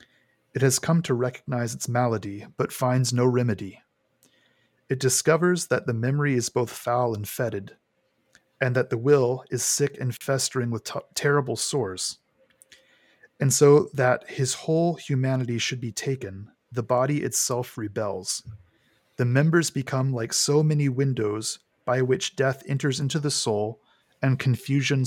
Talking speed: 145 wpm